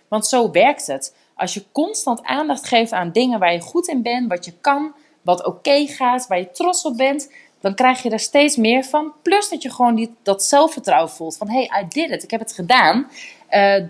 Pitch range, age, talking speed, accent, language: 195-285 Hz, 30-49, 230 wpm, Dutch, Dutch